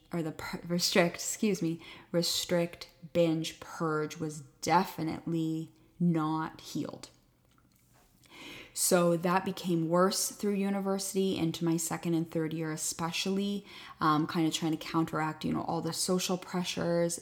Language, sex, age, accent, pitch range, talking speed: English, female, 20-39, American, 155-175 Hz, 130 wpm